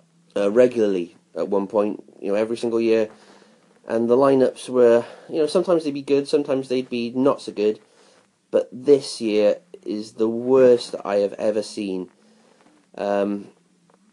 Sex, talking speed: male, 155 wpm